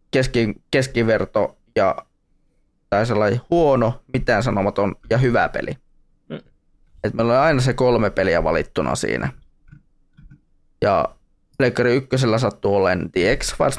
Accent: native